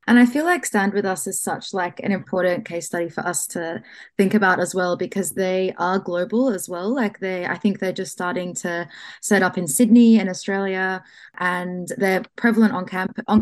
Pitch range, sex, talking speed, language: 175-205 Hz, female, 210 wpm, English